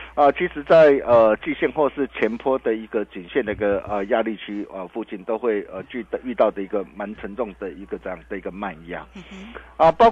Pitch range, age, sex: 120-185 Hz, 50-69, male